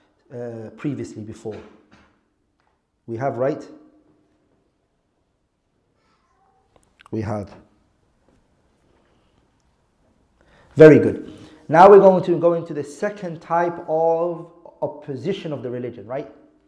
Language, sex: English, male